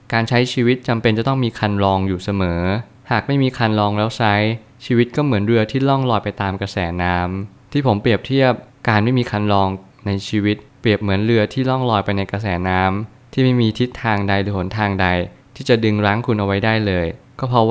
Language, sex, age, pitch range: Thai, male, 20-39, 100-120 Hz